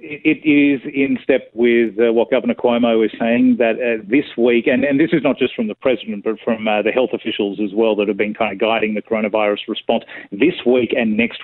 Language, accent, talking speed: English, Australian, 215 wpm